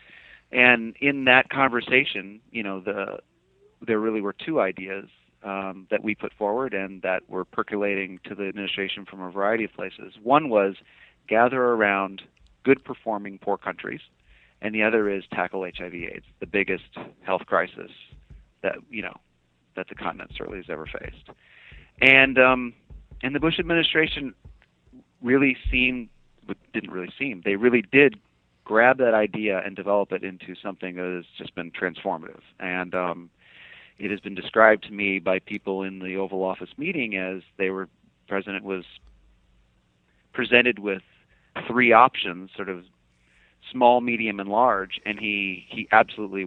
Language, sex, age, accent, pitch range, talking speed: English, male, 40-59, American, 90-110 Hz, 150 wpm